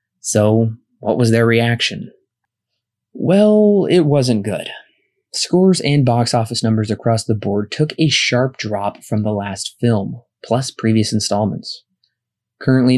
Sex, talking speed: male, 135 wpm